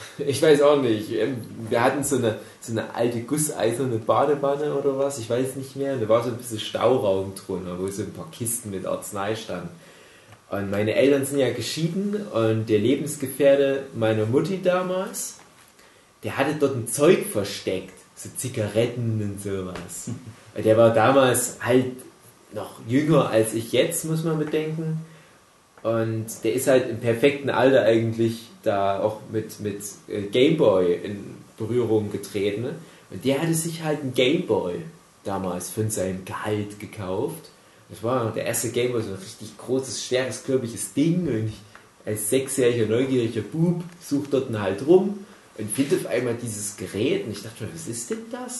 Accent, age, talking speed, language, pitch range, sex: German, 30-49, 165 wpm, German, 110-145 Hz, male